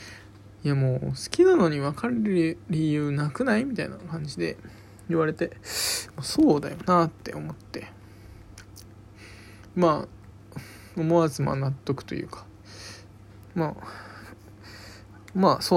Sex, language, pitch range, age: male, Japanese, 105-165 Hz, 20-39